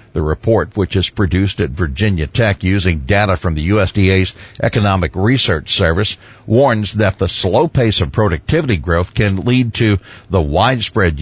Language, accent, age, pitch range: English, American, 60-79, 90-115 Hz